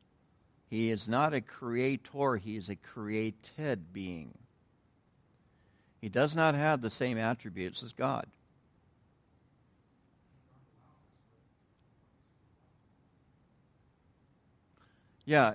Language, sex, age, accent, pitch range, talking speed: English, male, 60-79, American, 100-130 Hz, 75 wpm